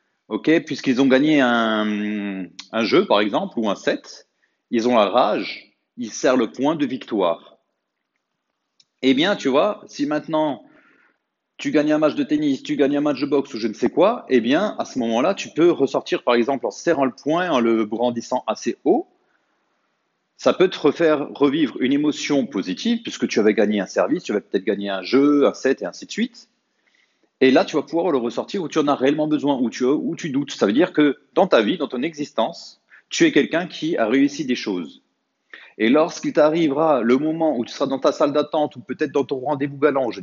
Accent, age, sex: French, 40-59, male